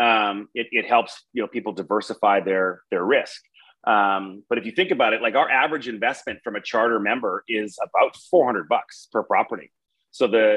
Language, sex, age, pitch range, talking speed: English, male, 30-49, 100-115 Hz, 195 wpm